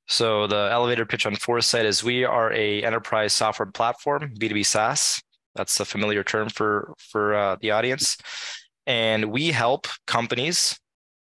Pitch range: 105-130 Hz